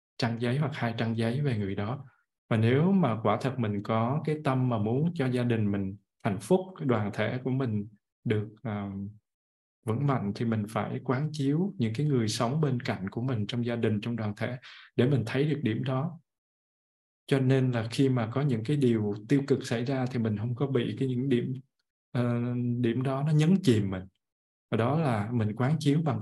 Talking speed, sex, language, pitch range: 215 wpm, male, Vietnamese, 110-135 Hz